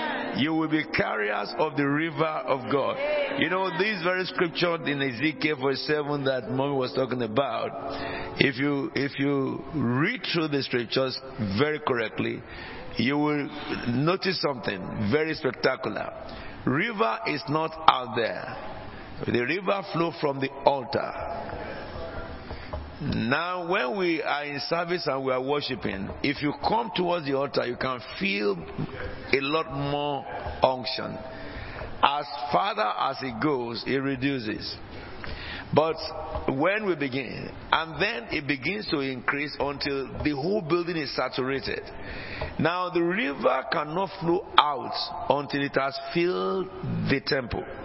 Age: 50-69